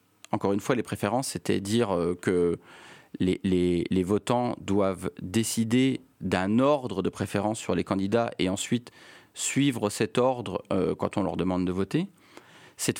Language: French